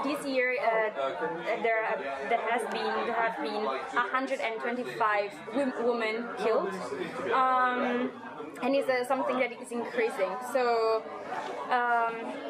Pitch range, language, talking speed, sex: 225-260 Hz, English, 115 wpm, female